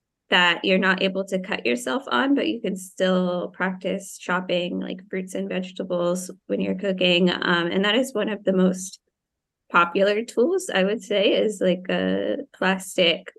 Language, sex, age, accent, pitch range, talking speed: English, female, 20-39, American, 180-210 Hz, 170 wpm